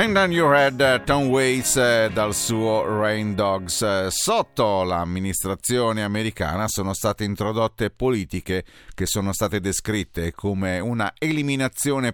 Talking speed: 70 wpm